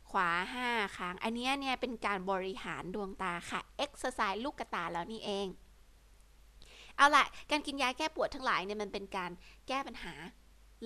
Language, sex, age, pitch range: Thai, female, 20-39, 185-240 Hz